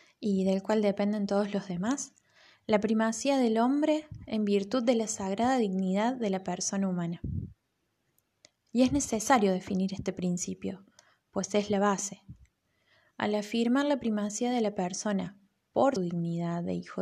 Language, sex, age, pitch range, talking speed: Spanish, female, 20-39, 185-225 Hz, 150 wpm